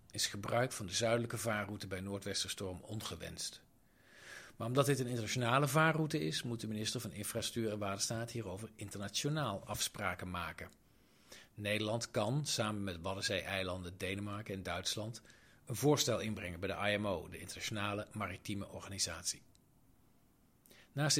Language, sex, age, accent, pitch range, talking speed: Dutch, male, 40-59, Dutch, 95-120 Hz, 135 wpm